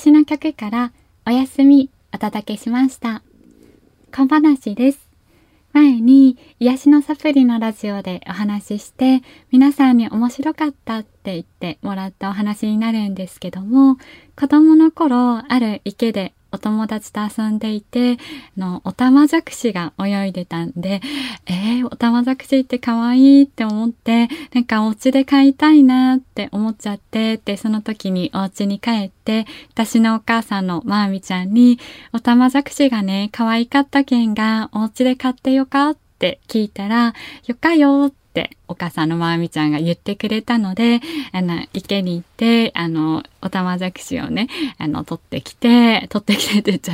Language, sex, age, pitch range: Japanese, female, 20-39, 205-270 Hz